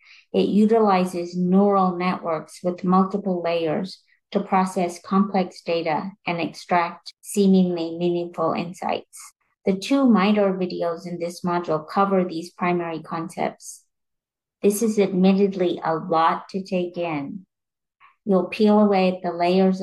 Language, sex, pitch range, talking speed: English, female, 170-195 Hz, 120 wpm